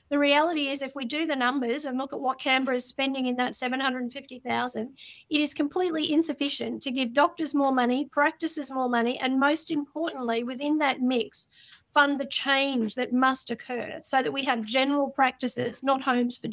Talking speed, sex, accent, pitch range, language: 185 wpm, female, Australian, 255-290 Hz, English